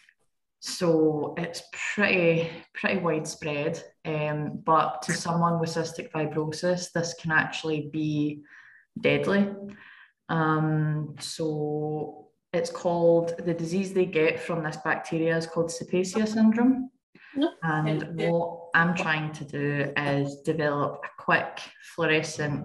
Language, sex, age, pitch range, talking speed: English, female, 20-39, 145-165 Hz, 115 wpm